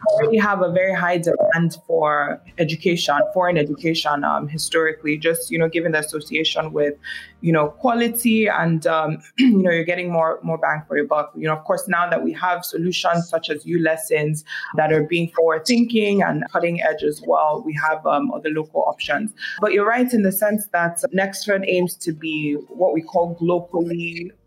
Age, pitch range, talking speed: 20-39, 160-195 Hz, 195 wpm